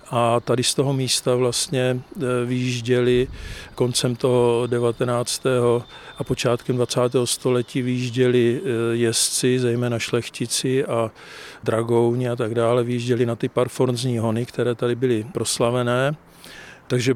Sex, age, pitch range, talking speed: male, 50-69, 120-130 Hz, 115 wpm